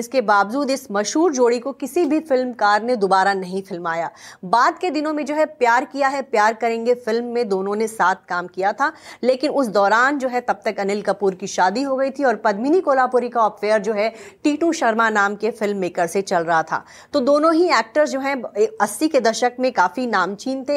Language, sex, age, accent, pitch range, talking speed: English, female, 30-49, Indian, 215-270 Hz, 215 wpm